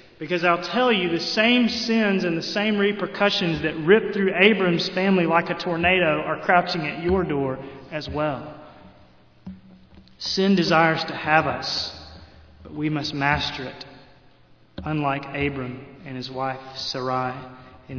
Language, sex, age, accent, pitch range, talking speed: English, male, 30-49, American, 140-180 Hz, 145 wpm